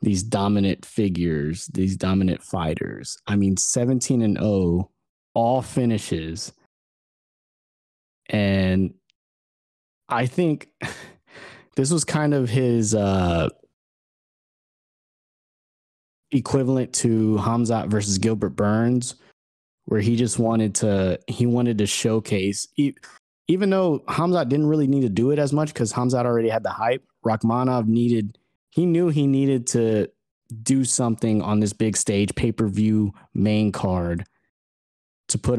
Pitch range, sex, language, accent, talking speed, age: 100-120 Hz, male, English, American, 120 wpm, 20-39